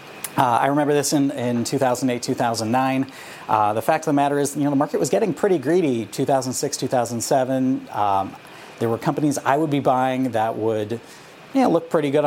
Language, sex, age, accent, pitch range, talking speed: English, male, 40-59, American, 120-145 Hz, 200 wpm